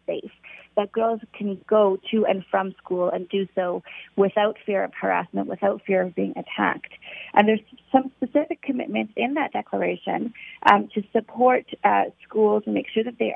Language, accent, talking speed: English, American, 175 wpm